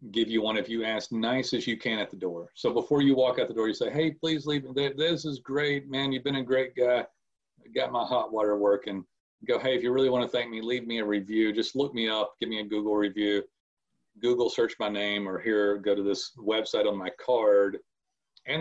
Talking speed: 240 wpm